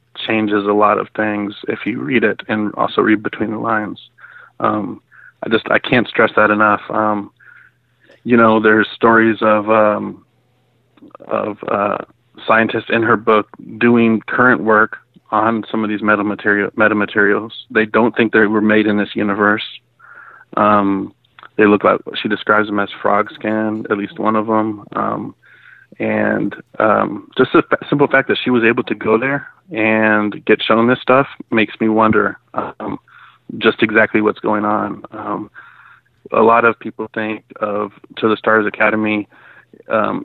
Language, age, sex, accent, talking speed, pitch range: English, 30-49, male, American, 165 wpm, 105-110 Hz